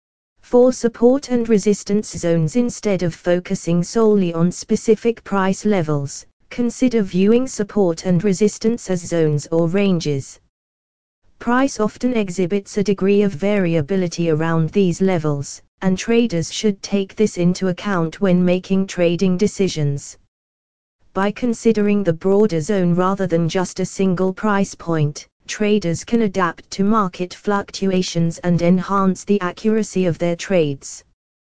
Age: 20-39